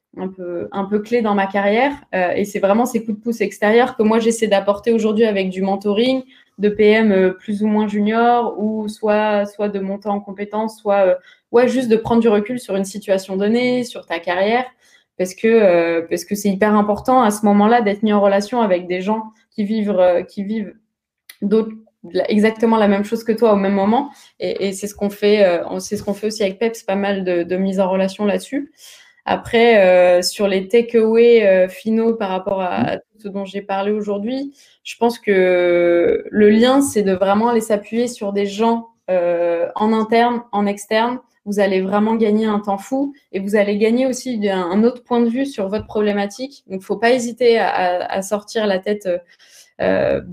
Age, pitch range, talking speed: 20-39, 195-230 Hz, 210 wpm